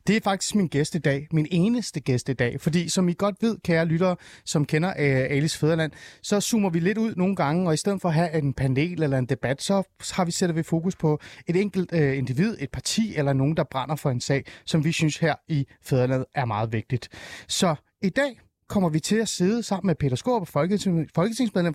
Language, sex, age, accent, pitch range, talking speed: Danish, male, 30-49, native, 135-185 Hz, 215 wpm